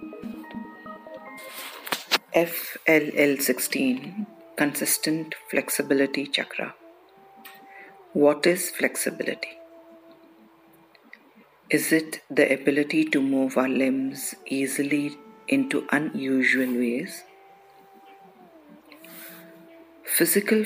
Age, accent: 50-69, Indian